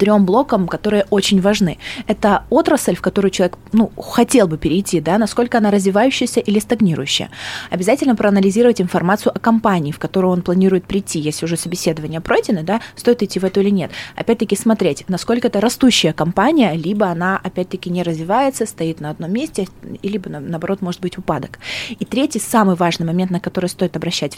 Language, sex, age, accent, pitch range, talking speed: Russian, female, 20-39, native, 170-210 Hz, 170 wpm